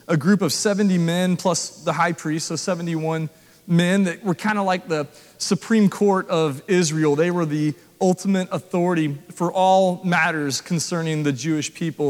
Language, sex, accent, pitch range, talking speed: English, male, American, 170-215 Hz, 170 wpm